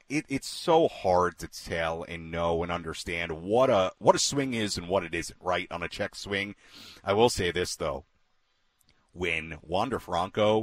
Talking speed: 185 wpm